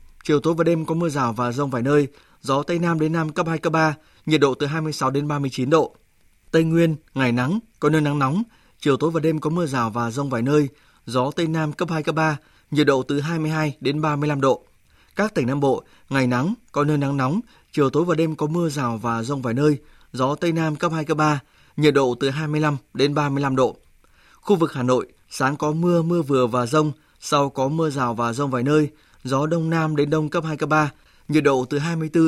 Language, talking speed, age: Vietnamese, 240 wpm, 20-39